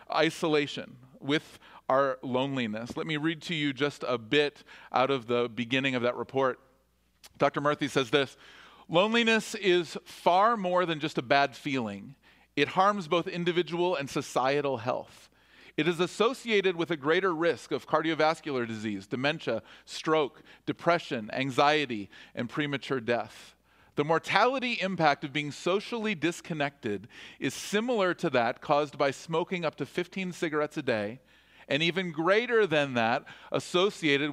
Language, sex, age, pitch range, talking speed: English, male, 40-59, 135-175 Hz, 145 wpm